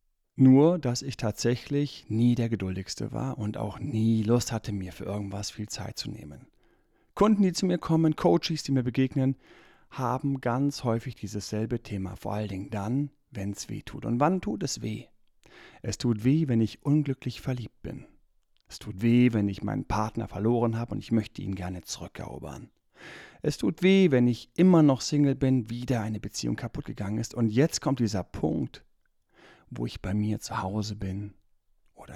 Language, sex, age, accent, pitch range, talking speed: German, male, 40-59, German, 105-135 Hz, 185 wpm